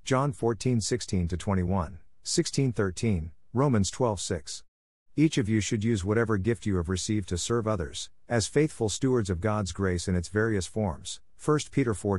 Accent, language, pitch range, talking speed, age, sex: American, English, 90-120 Hz, 160 wpm, 50-69, male